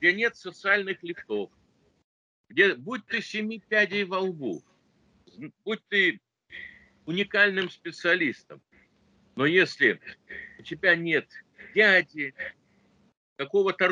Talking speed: 95 wpm